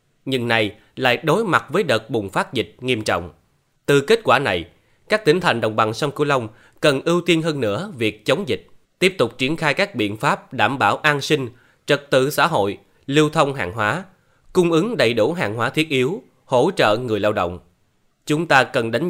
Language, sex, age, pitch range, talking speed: Vietnamese, male, 20-39, 115-165 Hz, 215 wpm